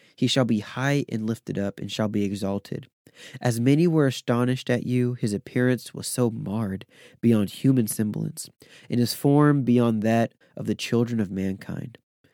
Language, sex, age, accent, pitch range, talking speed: English, male, 20-39, American, 105-135 Hz, 170 wpm